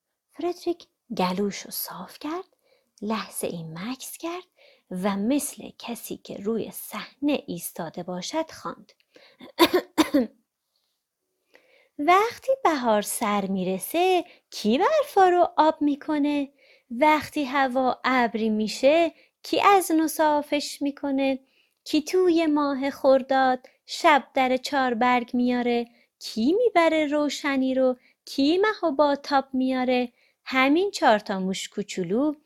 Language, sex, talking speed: Persian, female, 100 wpm